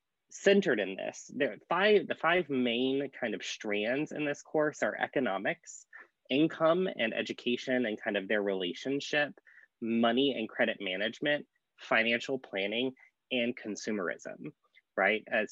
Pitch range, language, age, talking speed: 105-140 Hz, English, 20-39, 135 wpm